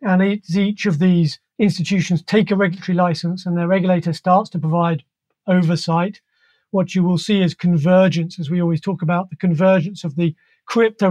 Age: 40-59